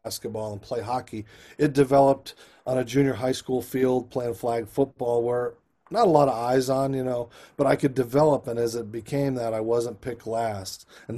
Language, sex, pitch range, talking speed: English, male, 120-145 Hz, 205 wpm